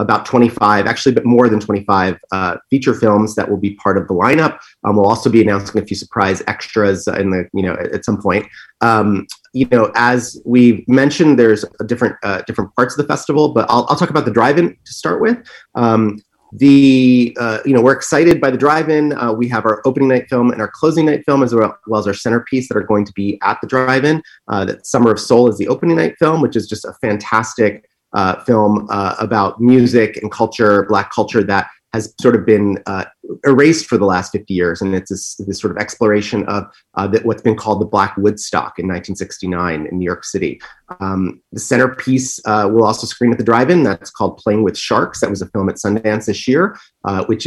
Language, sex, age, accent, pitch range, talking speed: English, male, 30-49, American, 105-125 Hz, 225 wpm